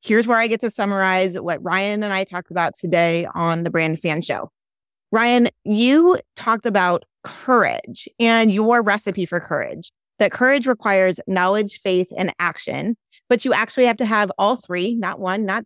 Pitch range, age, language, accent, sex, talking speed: 185-230 Hz, 30-49, English, American, female, 175 wpm